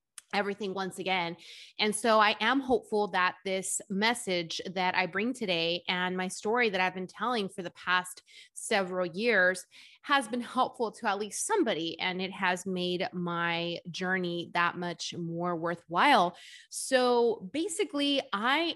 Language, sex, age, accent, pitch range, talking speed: English, female, 20-39, American, 185-235 Hz, 150 wpm